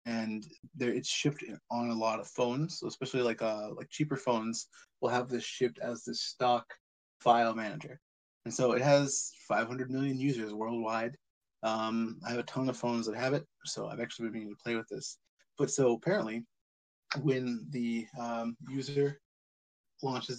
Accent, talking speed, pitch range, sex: American, 175 wpm, 115-140 Hz, male